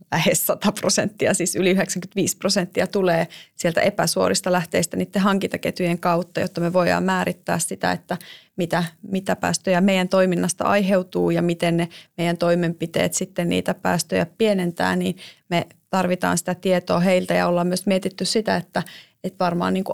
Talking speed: 150 wpm